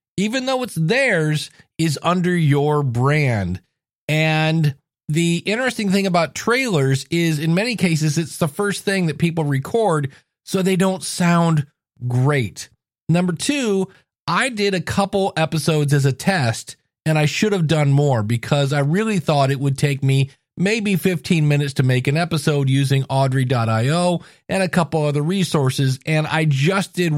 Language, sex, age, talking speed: English, male, 40-59, 160 wpm